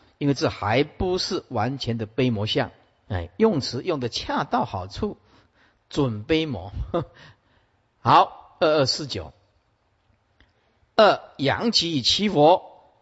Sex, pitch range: male, 110-165 Hz